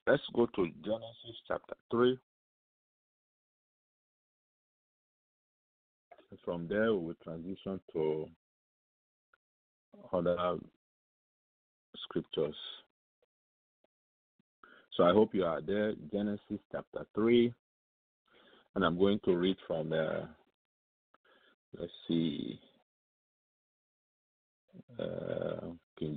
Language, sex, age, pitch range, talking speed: English, male, 50-69, 80-100 Hz, 80 wpm